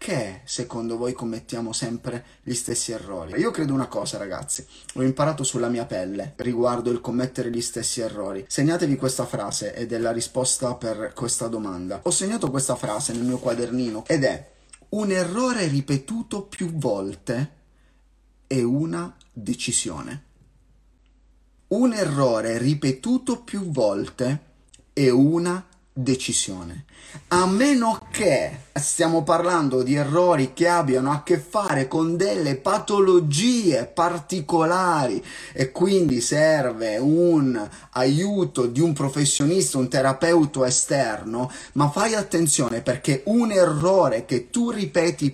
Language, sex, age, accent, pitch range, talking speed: Italian, male, 30-49, native, 125-175 Hz, 125 wpm